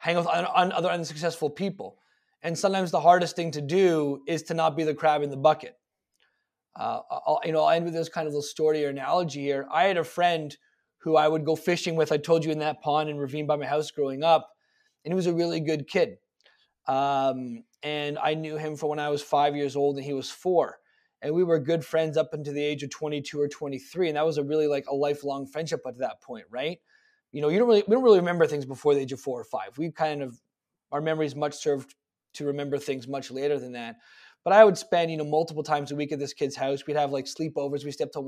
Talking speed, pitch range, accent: 250 wpm, 140-165 Hz, American